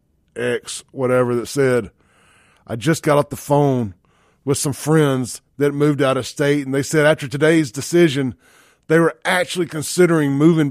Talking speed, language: 165 wpm, English